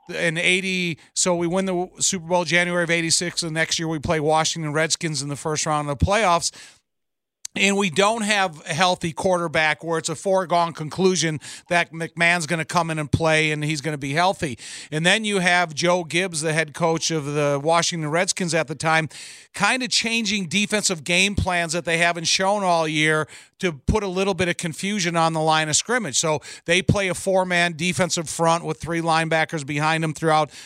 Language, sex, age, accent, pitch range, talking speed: English, male, 50-69, American, 160-185 Hz, 205 wpm